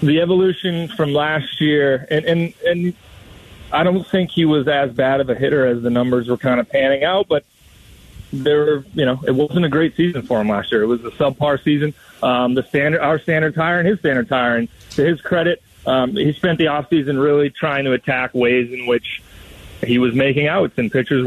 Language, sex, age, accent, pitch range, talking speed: English, male, 30-49, American, 135-170 Hz, 215 wpm